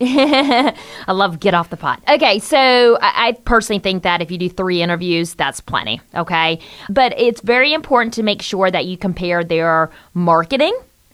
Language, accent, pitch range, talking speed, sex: English, American, 180-230 Hz, 170 wpm, female